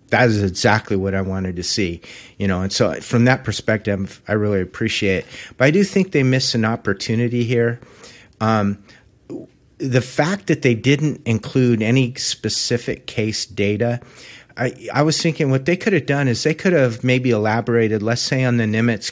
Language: English